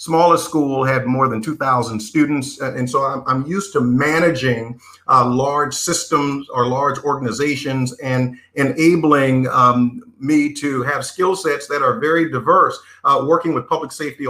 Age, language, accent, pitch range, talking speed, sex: 50-69, English, American, 130-165 Hz, 155 wpm, male